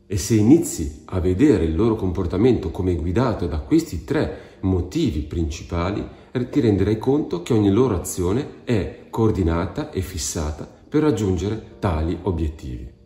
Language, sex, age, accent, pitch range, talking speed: Italian, male, 40-59, native, 90-120 Hz, 140 wpm